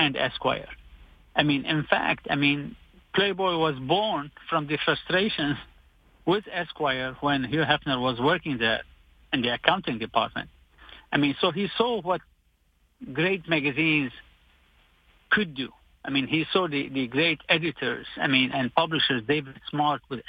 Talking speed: 150 wpm